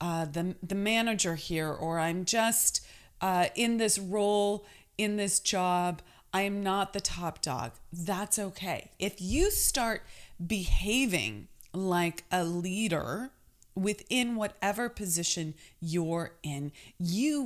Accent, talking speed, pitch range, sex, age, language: American, 125 wpm, 160-200 Hz, female, 30-49, English